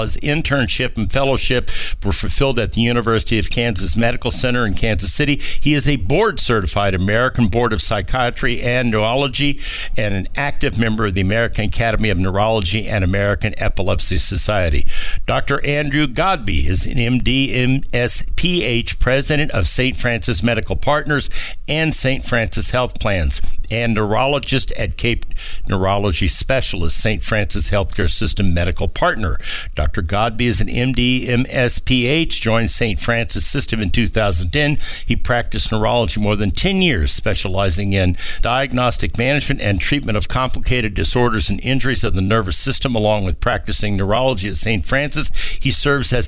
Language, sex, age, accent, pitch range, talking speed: English, male, 60-79, American, 100-125 Hz, 150 wpm